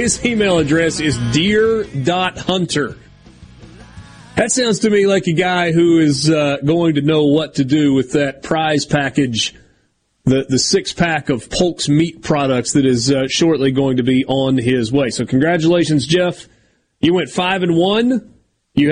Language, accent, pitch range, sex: English, American, 135-170 Hz, male